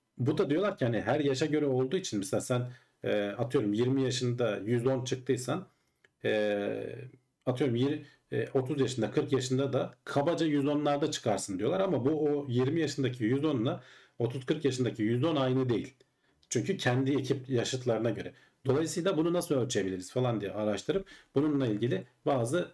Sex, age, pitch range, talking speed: male, 40-59, 105-140 Hz, 150 wpm